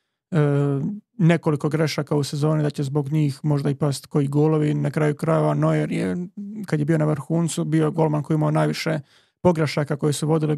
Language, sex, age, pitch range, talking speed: Croatian, male, 30-49, 150-165 Hz, 180 wpm